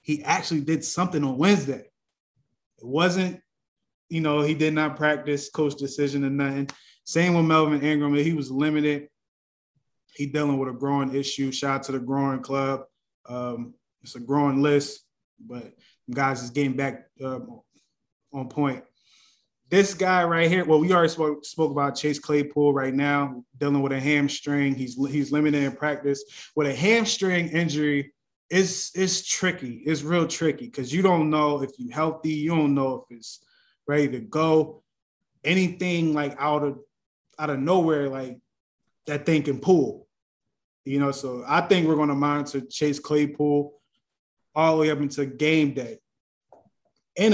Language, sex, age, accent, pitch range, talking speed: English, male, 20-39, American, 135-155 Hz, 160 wpm